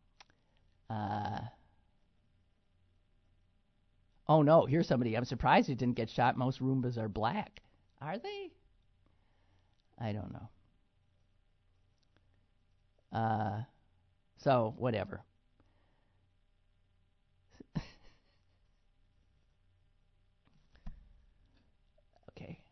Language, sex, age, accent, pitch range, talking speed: English, male, 50-69, American, 95-125 Hz, 65 wpm